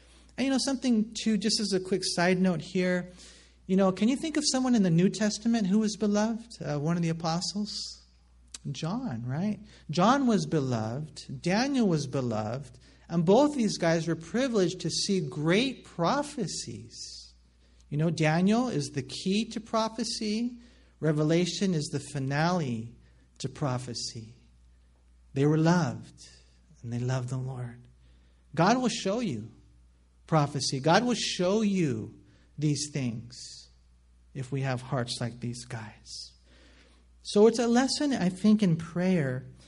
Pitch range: 120-190 Hz